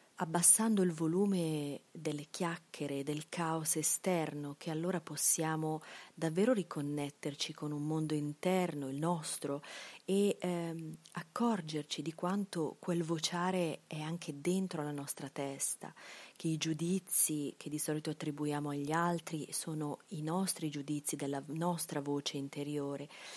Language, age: Italian, 30-49